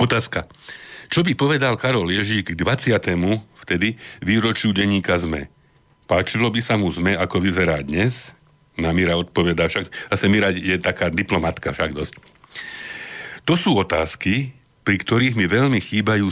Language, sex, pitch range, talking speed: Slovak, male, 90-120 Hz, 145 wpm